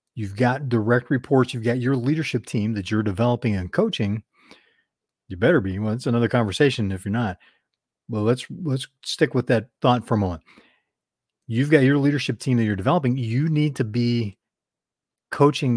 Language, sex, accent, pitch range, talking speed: English, male, American, 110-135 Hz, 180 wpm